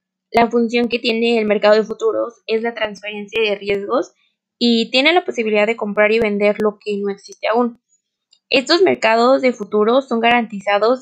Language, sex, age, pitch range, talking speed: Spanish, female, 20-39, 210-245 Hz, 175 wpm